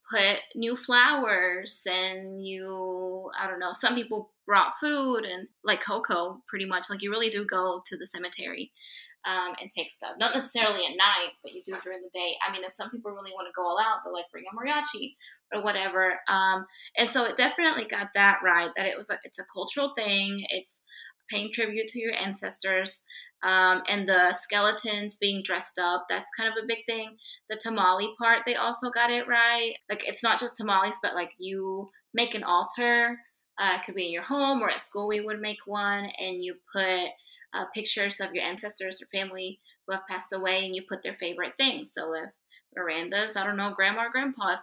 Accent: American